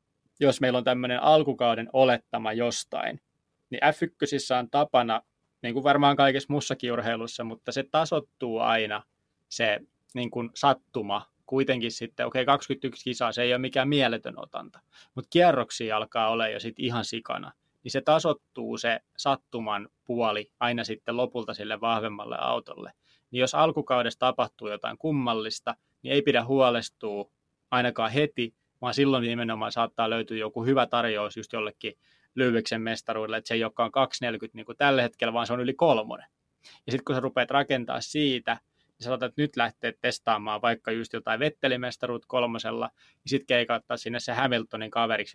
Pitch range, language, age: 115-130 Hz, Finnish, 20-39